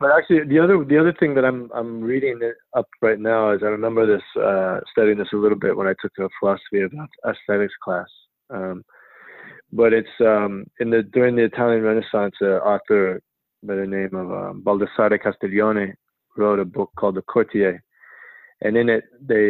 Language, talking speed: English, 190 wpm